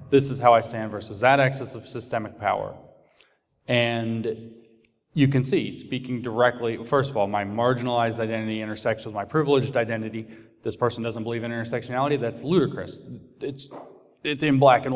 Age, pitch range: 30-49, 115-140 Hz